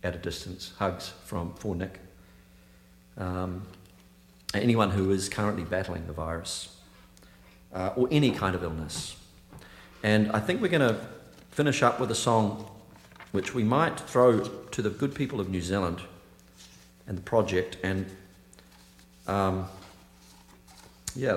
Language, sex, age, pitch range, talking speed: English, male, 50-69, 90-115 Hz, 140 wpm